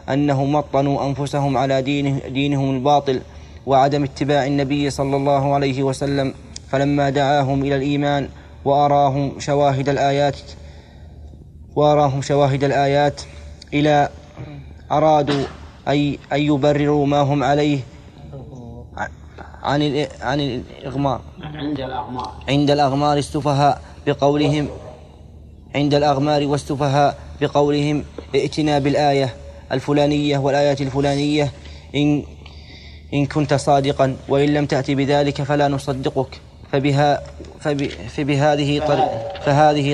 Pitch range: 135-145 Hz